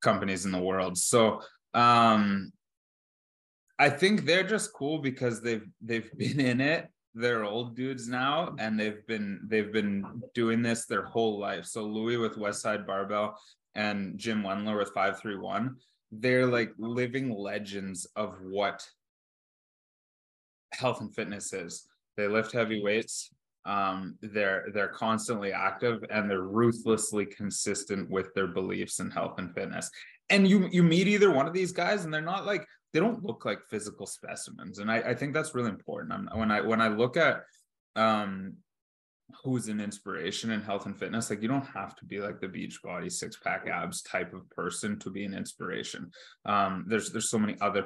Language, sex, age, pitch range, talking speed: English, male, 20-39, 100-120 Hz, 175 wpm